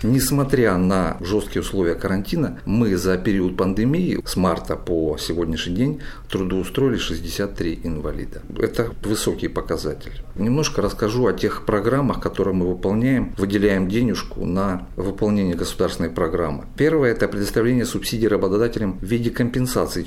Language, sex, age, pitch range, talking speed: Russian, male, 50-69, 90-115 Hz, 125 wpm